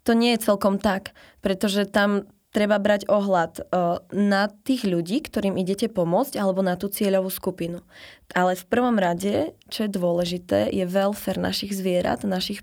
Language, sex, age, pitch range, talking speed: Slovak, female, 20-39, 190-215 Hz, 160 wpm